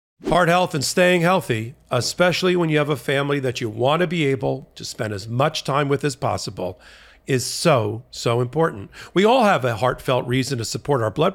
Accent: American